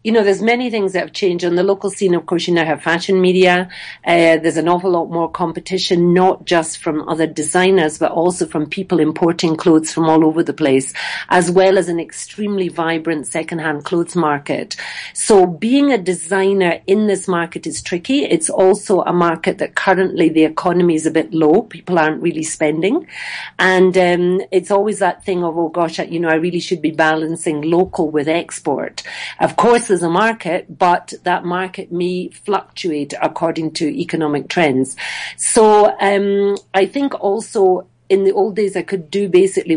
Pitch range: 160-190 Hz